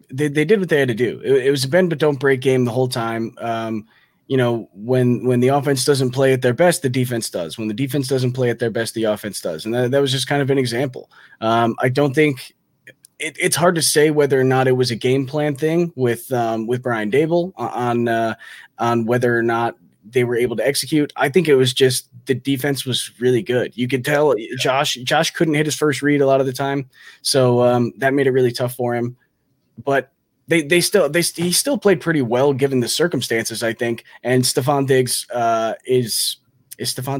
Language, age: English, 20-39